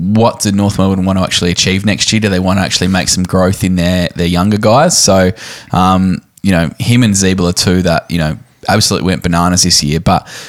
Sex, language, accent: male, English, Australian